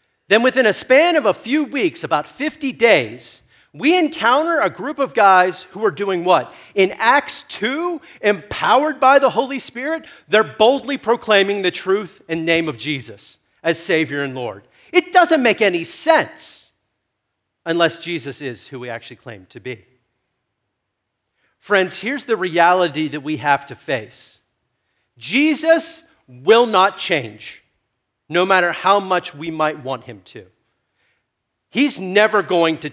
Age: 40-59